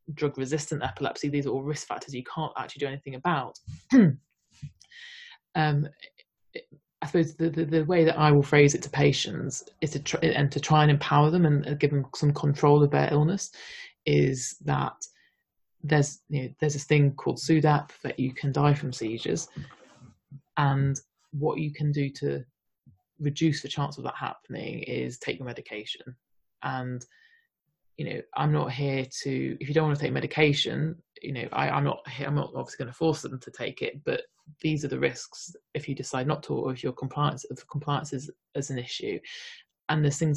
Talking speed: 195 wpm